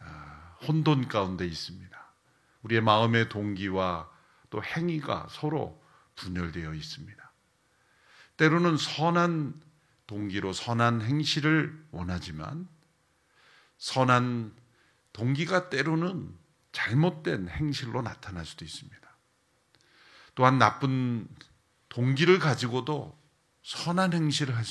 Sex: male